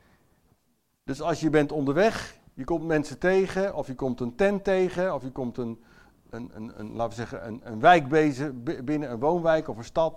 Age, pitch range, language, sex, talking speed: 60-79, 115-155 Hz, English, male, 185 wpm